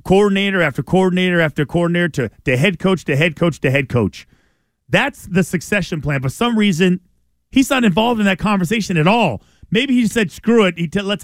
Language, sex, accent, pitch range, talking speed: English, male, American, 160-215 Hz, 200 wpm